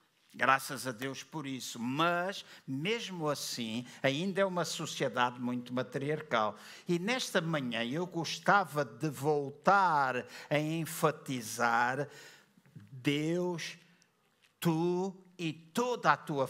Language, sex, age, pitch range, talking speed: Portuguese, male, 60-79, 130-165 Hz, 105 wpm